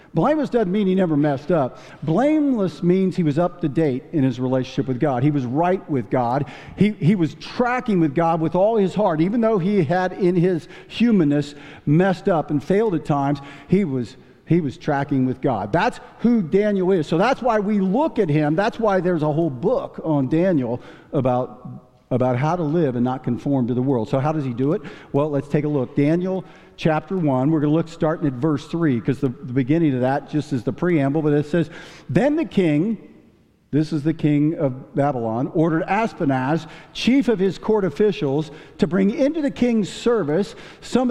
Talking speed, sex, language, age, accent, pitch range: 205 wpm, male, English, 50-69, American, 145-195 Hz